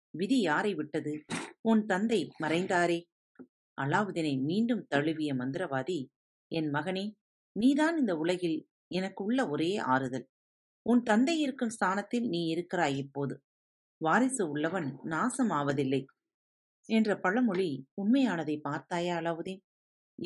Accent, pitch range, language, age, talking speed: native, 145-220 Hz, Tamil, 40-59, 100 wpm